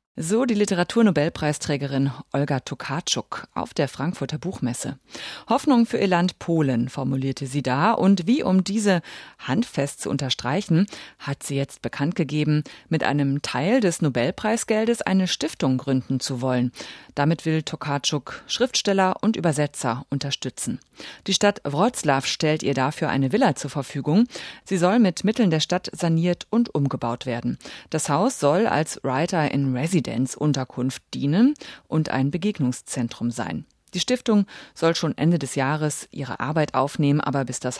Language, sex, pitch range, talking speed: German, female, 135-185 Hz, 145 wpm